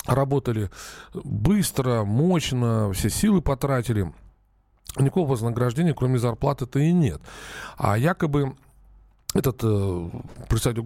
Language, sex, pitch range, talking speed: Russian, male, 105-140 Hz, 95 wpm